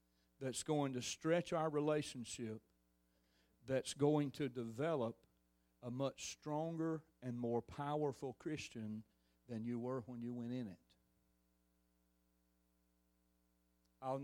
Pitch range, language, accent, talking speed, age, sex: 105-140 Hz, English, American, 110 wpm, 40-59, male